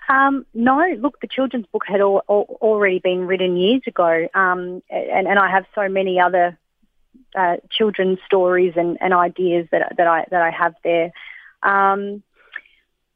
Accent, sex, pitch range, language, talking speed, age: Australian, female, 175-210 Hz, English, 170 wpm, 30-49